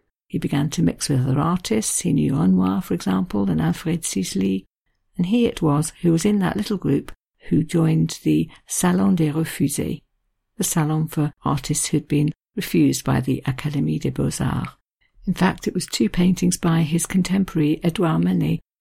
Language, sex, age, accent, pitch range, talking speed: English, female, 50-69, British, 150-180 Hz, 175 wpm